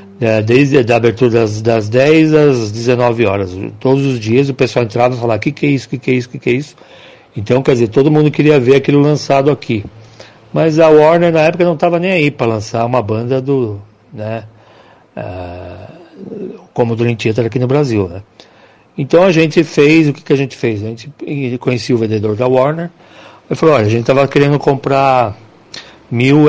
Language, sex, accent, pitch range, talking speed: Portuguese, male, Brazilian, 110-140 Hz, 210 wpm